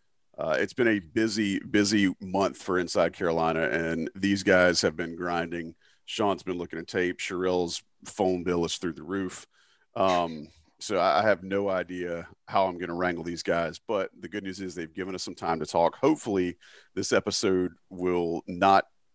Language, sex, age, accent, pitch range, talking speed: English, male, 40-59, American, 85-100 Hz, 180 wpm